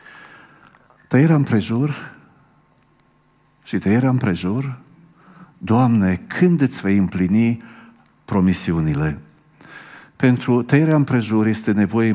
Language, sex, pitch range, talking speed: Romanian, male, 95-125 Hz, 80 wpm